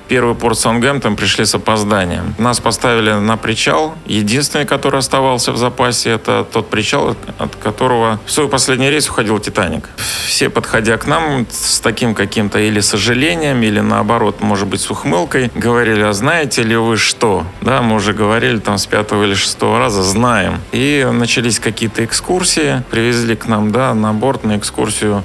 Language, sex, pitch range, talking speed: Russian, male, 105-120 Hz, 170 wpm